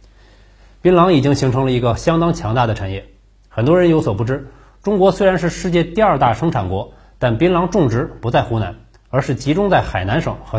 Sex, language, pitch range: male, Chinese, 105-150 Hz